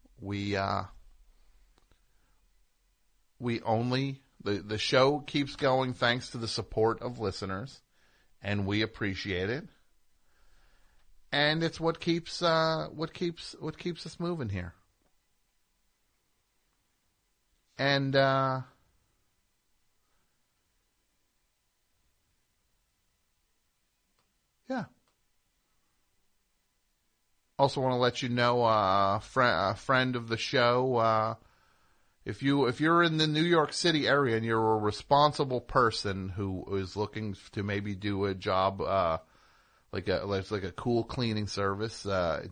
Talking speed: 115 wpm